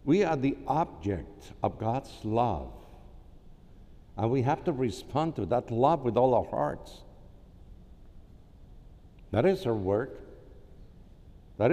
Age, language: 70-89, English